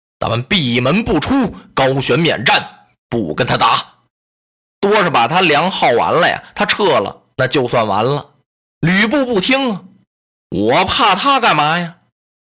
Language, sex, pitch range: Chinese, male, 160-260 Hz